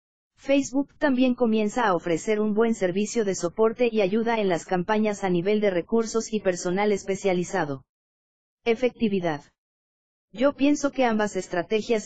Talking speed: 140 wpm